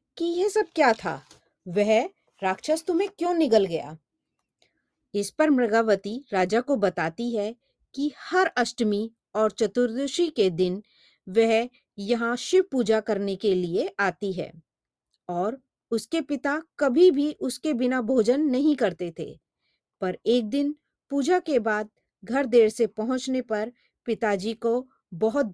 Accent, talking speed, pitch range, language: native, 140 wpm, 205-275 Hz, Hindi